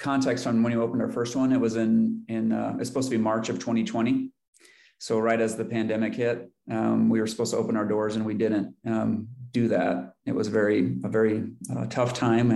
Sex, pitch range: male, 110-125 Hz